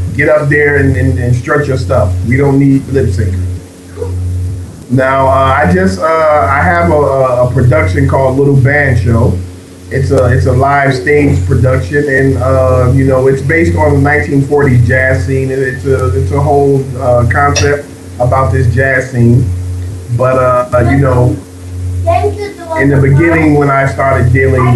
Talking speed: 165 wpm